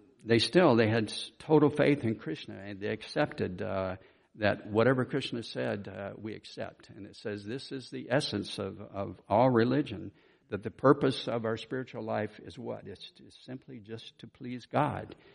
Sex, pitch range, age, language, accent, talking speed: male, 105-130 Hz, 60-79, English, American, 180 wpm